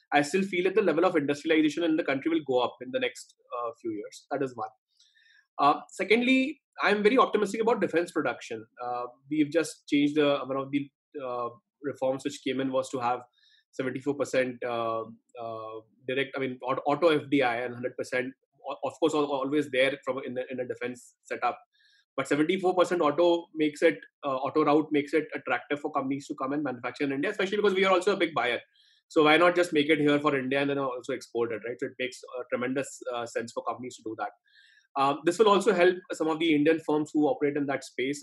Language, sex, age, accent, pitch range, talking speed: English, male, 20-39, Indian, 130-170 Hz, 220 wpm